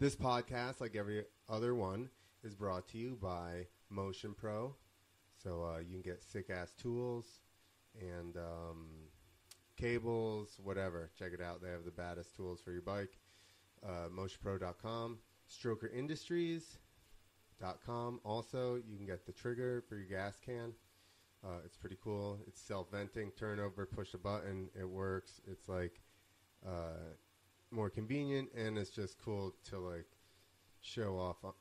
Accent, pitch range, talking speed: American, 90-110 Hz, 140 wpm